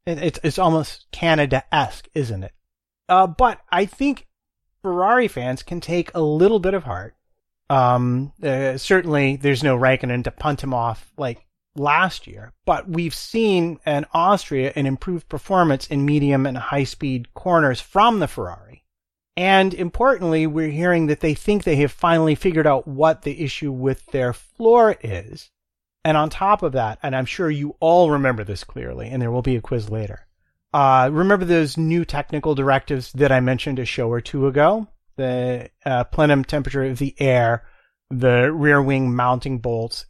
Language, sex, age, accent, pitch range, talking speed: English, male, 30-49, American, 130-170 Hz, 170 wpm